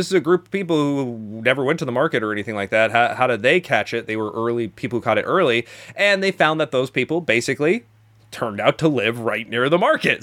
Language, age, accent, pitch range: English, 30-49, American, 115-150 Hz